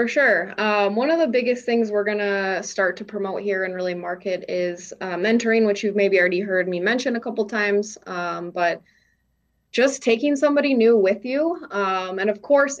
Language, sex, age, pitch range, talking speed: English, female, 20-39, 185-215 Hz, 205 wpm